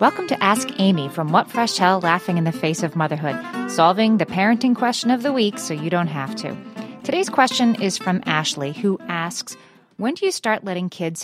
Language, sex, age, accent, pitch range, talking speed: English, female, 30-49, American, 160-220 Hz, 210 wpm